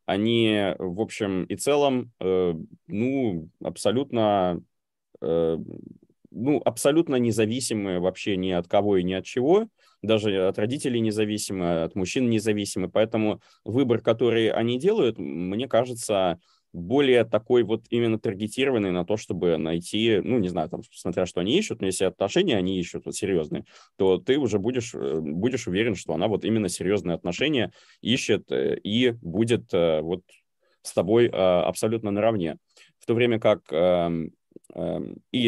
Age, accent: 20-39, native